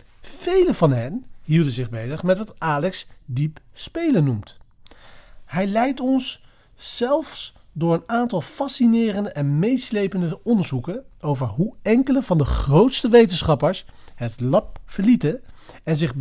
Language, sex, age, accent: Dutch, male, 40-59, Dutch